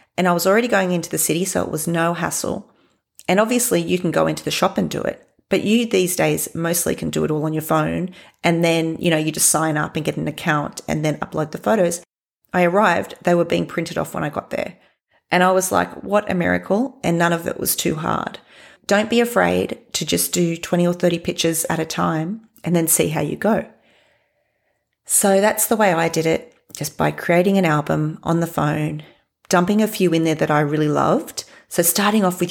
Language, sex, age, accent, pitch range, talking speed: English, female, 30-49, Australian, 155-185 Hz, 230 wpm